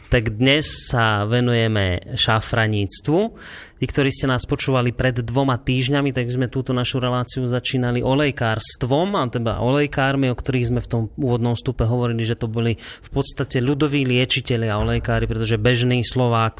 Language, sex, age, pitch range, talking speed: Slovak, male, 30-49, 120-140 Hz, 155 wpm